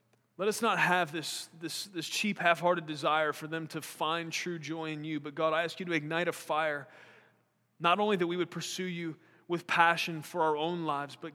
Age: 30-49